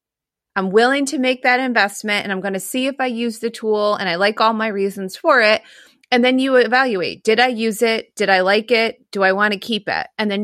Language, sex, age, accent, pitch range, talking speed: English, female, 30-49, American, 200-240 Hz, 255 wpm